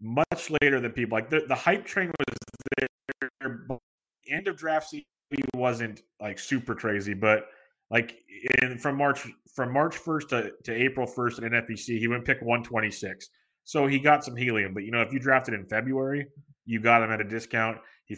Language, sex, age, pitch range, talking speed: English, male, 30-49, 115-135 Hz, 200 wpm